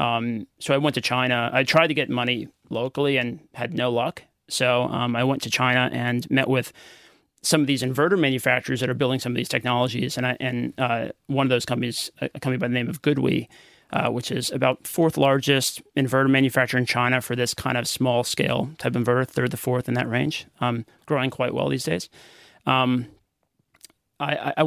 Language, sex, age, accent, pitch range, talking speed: English, male, 30-49, American, 120-135 Hz, 205 wpm